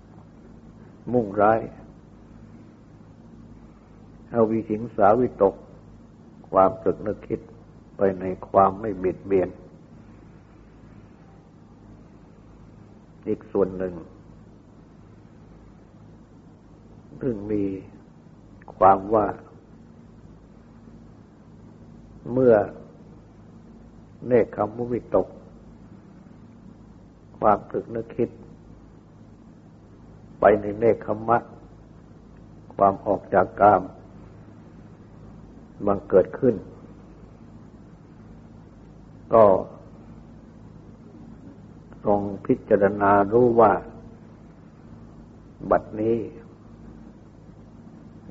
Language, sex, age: Thai, male, 60-79